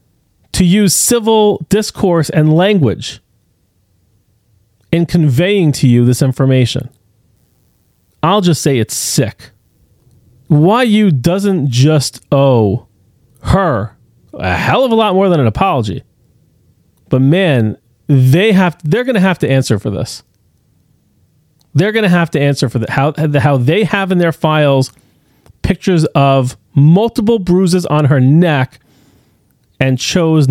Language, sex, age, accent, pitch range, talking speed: English, male, 40-59, American, 120-175 Hz, 135 wpm